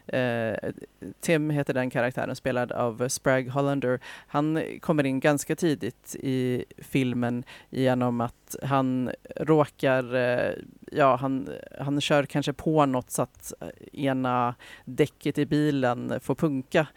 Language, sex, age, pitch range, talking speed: Swedish, female, 30-49, 130-145 Hz, 125 wpm